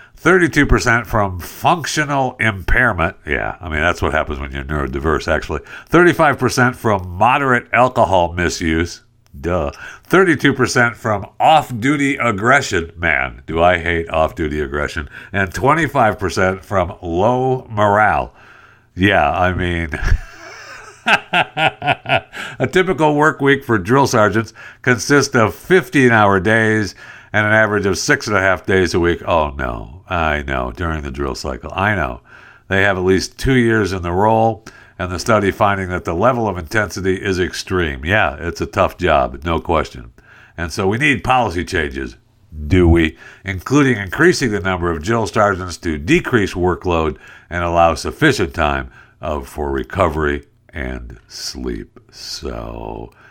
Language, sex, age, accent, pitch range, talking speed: English, male, 60-79, American, 85-120 Hz, 140 wpm